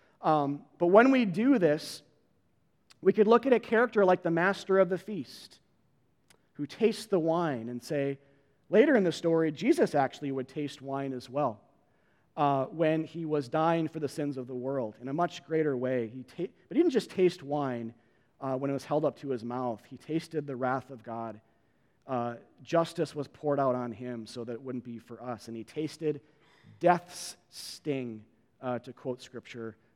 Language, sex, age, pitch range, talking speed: English, male, 30-49, 130-165 Hz, 190 wpm